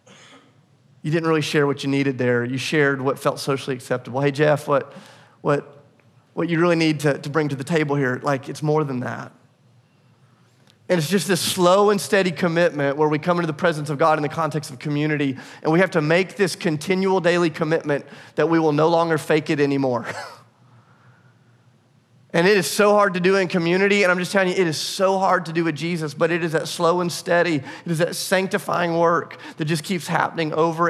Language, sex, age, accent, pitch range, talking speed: English, male, 30-49, American, 140-175 Hz, 215 wpm